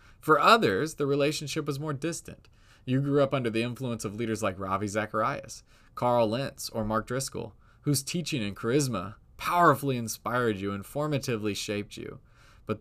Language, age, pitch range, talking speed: English, 20-39, 105-140 Hz, 165 wpm